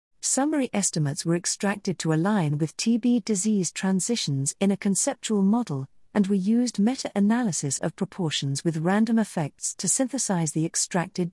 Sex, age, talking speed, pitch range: female, 50-69, 145 wpm, 160-215 Hz